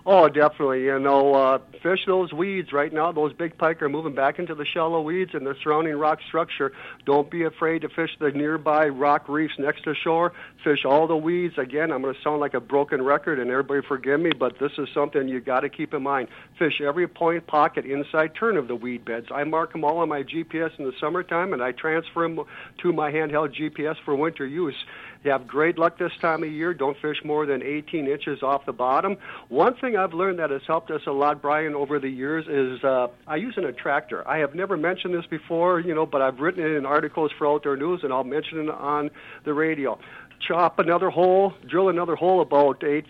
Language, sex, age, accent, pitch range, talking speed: English, male, 60-79, American, 140-165 Hz, 230 wpm